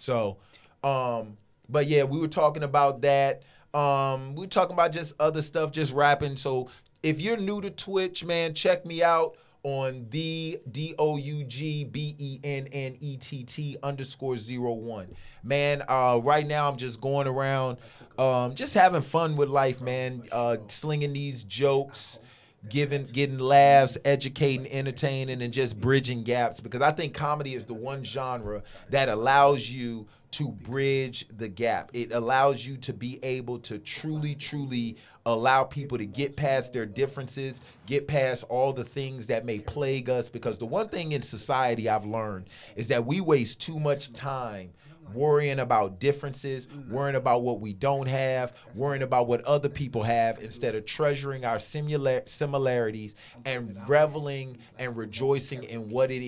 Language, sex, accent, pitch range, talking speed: English, male, American, 120-145 Hz, 165 wpm